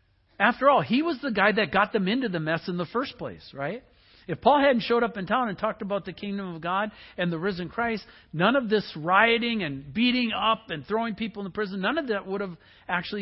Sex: male